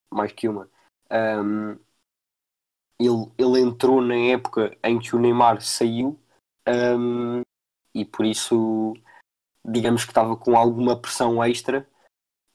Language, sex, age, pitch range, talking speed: Portuguese, male, 20-39, 110-125 Hz, 110 wpm